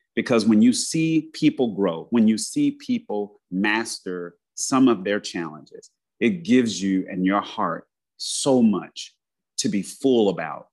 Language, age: English, 30-49